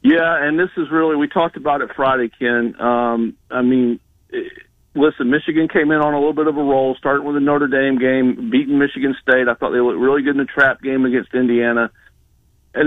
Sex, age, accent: male, 50-69, American